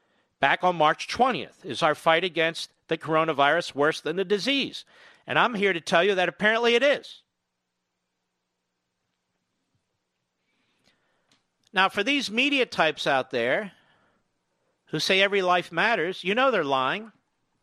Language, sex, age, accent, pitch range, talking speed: English, male, 50-69, American, 145-200 Hz, 135 wpm